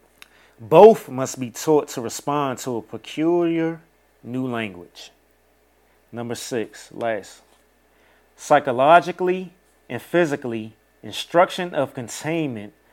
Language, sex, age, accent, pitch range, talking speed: English, male, 30-49, American, 105-150 Hz, 95 wpm